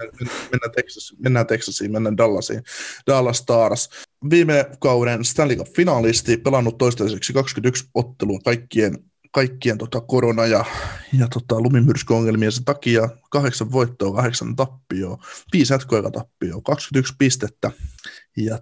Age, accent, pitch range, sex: 20-39, native, 115-135 Hz, male